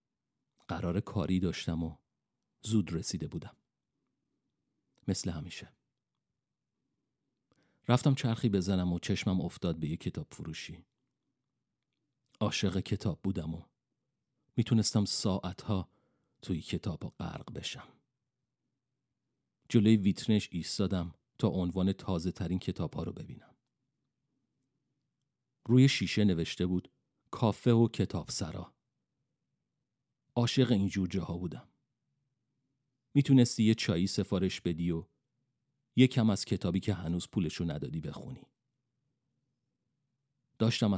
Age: 40-59